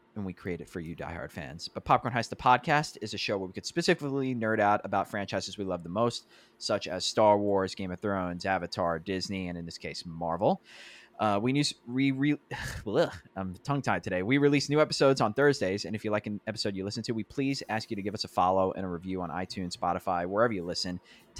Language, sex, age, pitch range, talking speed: English, male, 20-39, 90-115 Hz, 240 wpm